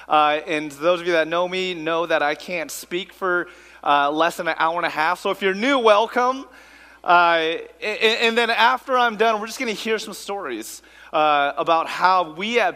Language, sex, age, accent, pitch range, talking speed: English, male, 30-49, American, 165-225 Hz, 215 wpm